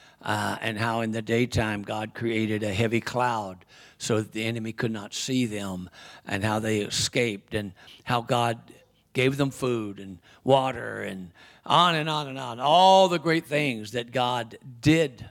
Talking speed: 175 wpm